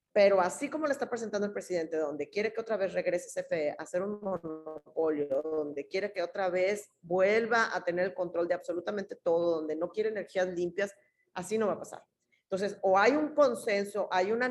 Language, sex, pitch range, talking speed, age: Spanish, female, 175-215 Hz, 205 wpm, 40-59